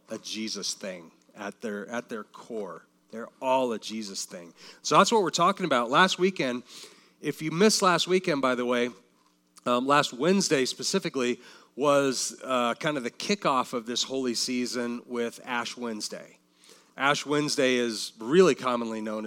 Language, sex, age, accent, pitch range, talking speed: English, male, 30-49, American, 120-160 Hz, 160 wpm